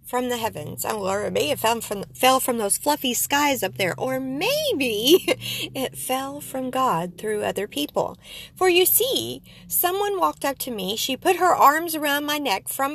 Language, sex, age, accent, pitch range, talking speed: English, female, 50-69, American, 235-325 Hz, 200 wpm